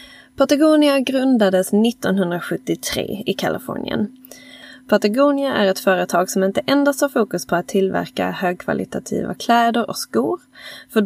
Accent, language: native, Swedish